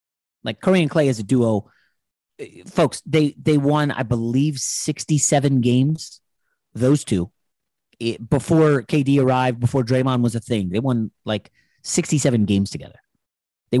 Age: 30-49